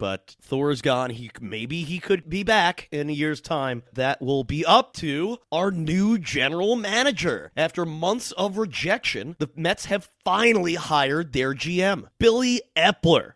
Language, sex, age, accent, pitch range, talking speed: English, male, 30-49, American, 135-185 Hz, 160 wpm